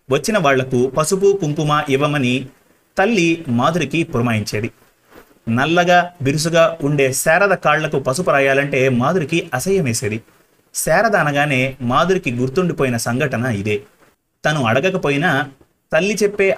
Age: 30-49